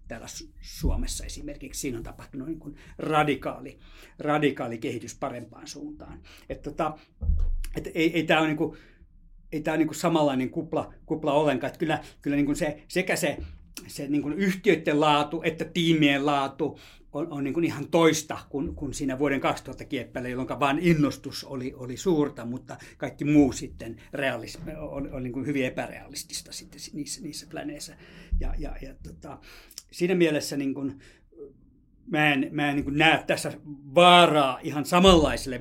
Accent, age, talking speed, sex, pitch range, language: native, 60-79, 155 wpm, male, 130-155 Hz, Finnish